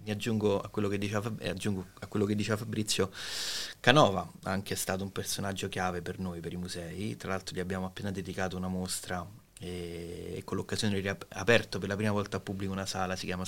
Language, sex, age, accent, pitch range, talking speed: Italian, male, 30-49, native, 95-105 Hz, 205 wpm